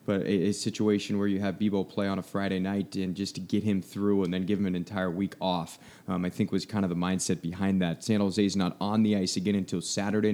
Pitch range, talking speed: 100-115 Hz, 260 wpm